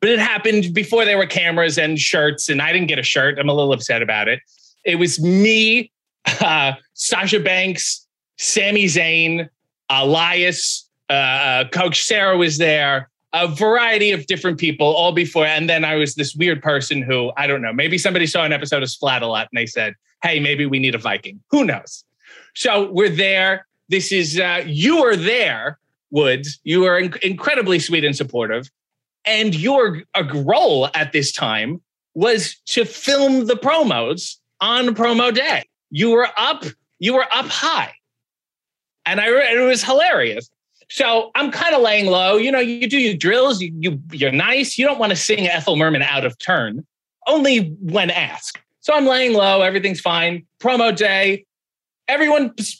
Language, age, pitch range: English, 20-39, 155-225 Hz